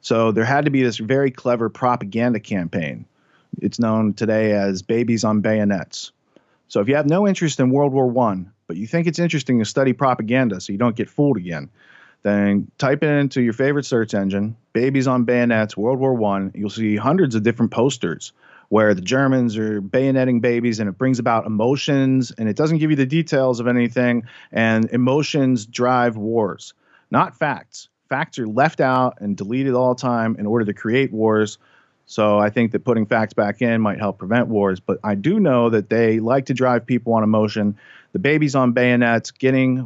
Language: English